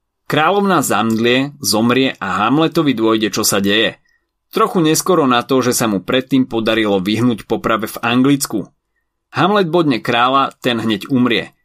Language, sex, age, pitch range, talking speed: Slovak, male, 30-49, 105-140 Hz, 145 wpm